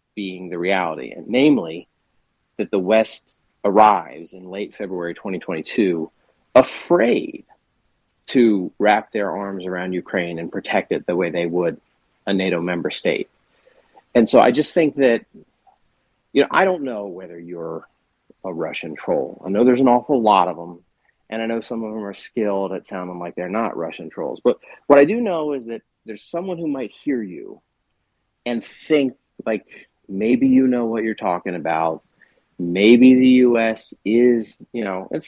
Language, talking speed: English, 170 wpm